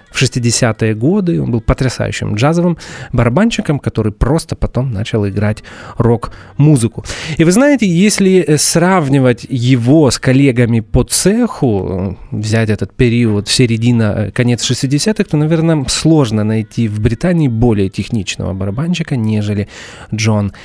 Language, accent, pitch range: Russian, native, 115-155 Hz